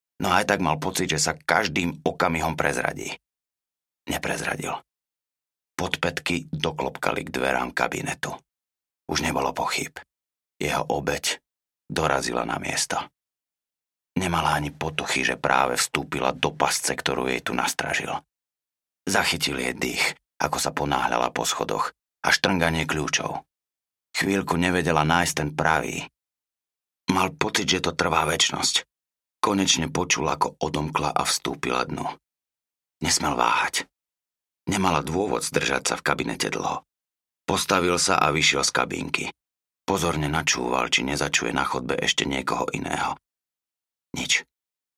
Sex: male